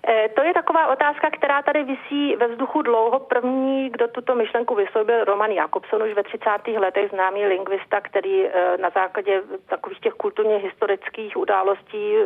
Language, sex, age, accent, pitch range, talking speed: Czech, female, 40-59, native, 200-255 Hz, 150 wpm